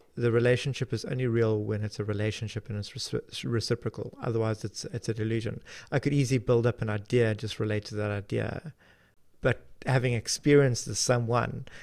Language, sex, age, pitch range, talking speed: English, male, 30-49, 110-130 Hz, 170 wpm